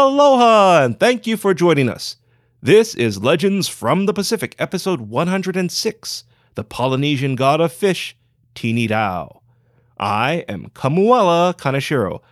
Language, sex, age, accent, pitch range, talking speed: English, male, 30-49, American, 115-180 Hz, 125 wpm